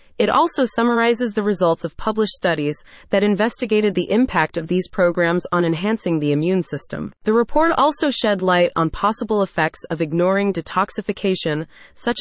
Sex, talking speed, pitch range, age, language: female, 155 wpm, 170-230 Hz, 20-39, English